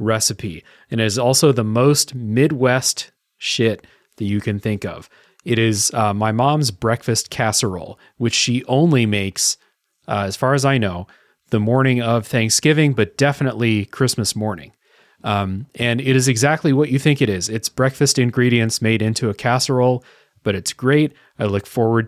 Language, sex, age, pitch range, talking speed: English, male, 30-49, 110-130 Hz, 165 wpm